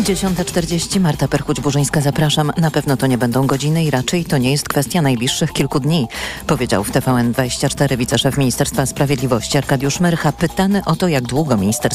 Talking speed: 165 wpm